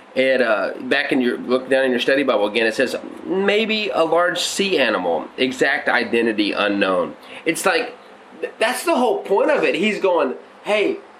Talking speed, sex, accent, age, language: 175 wpm, male, American, 30-49, English